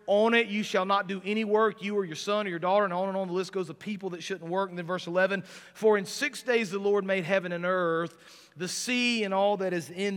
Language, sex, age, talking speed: English, male, 40-59, 285 wpm